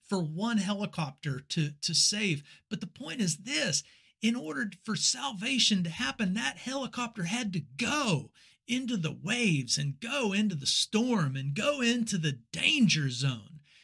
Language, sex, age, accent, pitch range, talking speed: English, male, 50-69, American, 135-200 Hz, 155 wpm